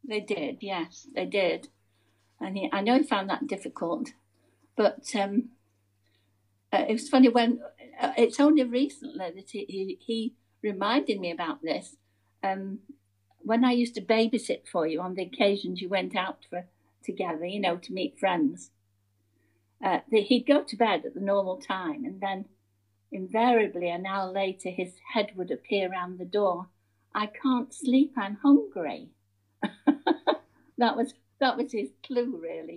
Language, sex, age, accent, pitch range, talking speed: English, female, 60-79, British, 170-245 Hz, 160 wpm